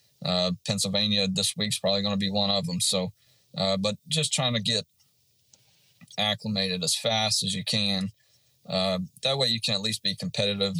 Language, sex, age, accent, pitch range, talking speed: English, male, 30-49, American, 95-115 Hz, 185 wpm